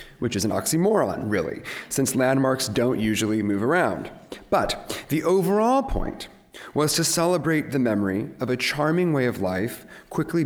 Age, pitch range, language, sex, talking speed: 30-49, 100-140 Hz, English, male, 155 wpm